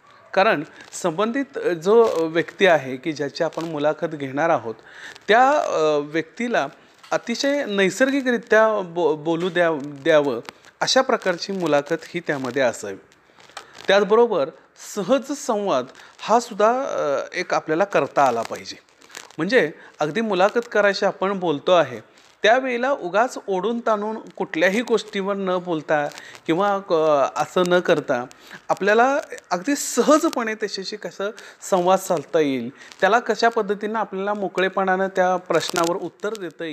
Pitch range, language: 165-220 Hz, Marathi